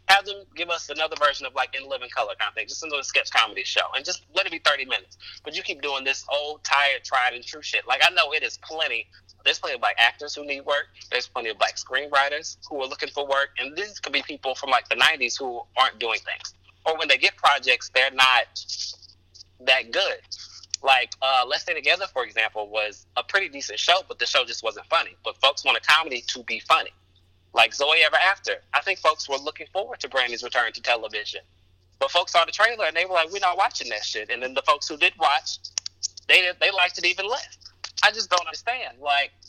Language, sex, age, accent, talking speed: English, male, 30-49, American, 240 wpm